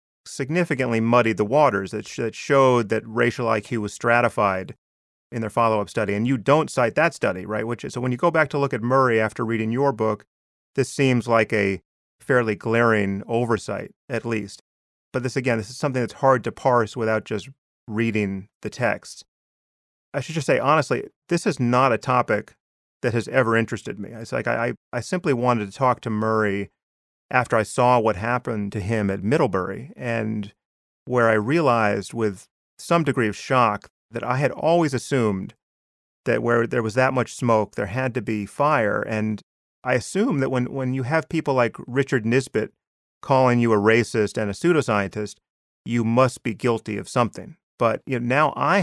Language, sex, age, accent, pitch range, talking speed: English, male, 30-49, American, 105-130 Hz, 190 wpm